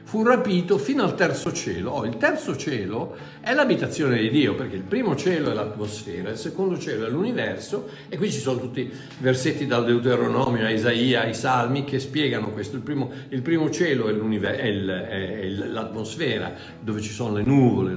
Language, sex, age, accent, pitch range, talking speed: Italian, male, 50-69, native, 105-150 Hz, 180 wpm